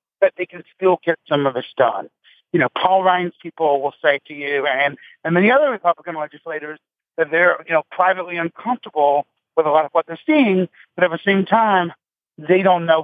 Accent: American